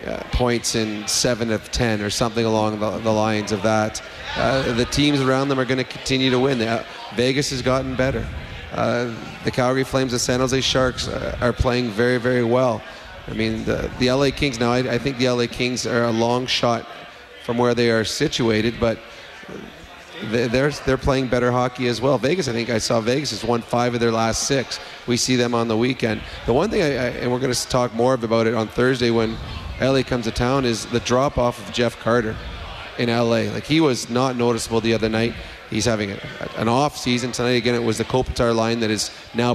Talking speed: 225 wpm